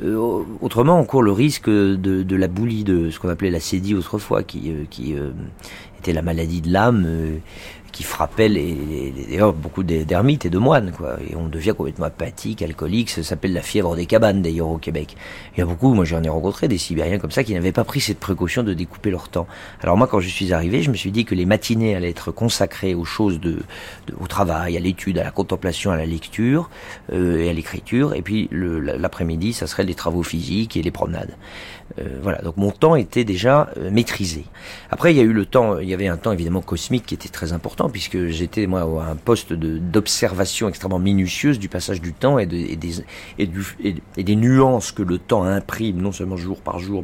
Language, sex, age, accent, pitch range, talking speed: French, male, 40-59, French, 85-105 Hz, 230 wpm